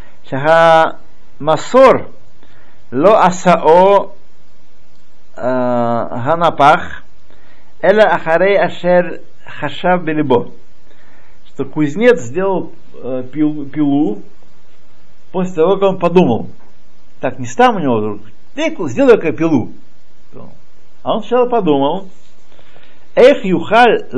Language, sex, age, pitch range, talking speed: Russian, male, 60-79, 125-195 Hz, 85 wpm